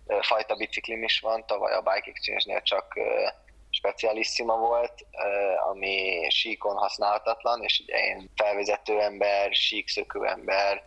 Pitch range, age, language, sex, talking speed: 100-110 Hz, 20-39, Hungarian, male, 110 wpm